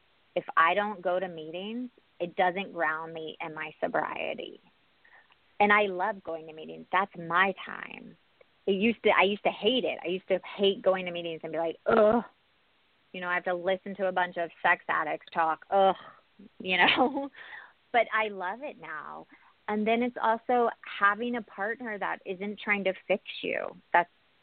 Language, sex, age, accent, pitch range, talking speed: English, female, 30-49, American, 175-210 Hz, 185 wpm